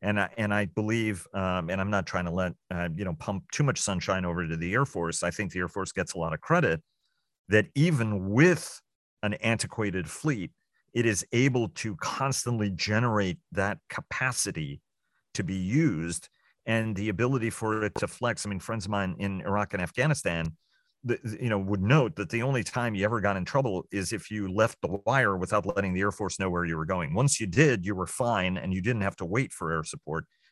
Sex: male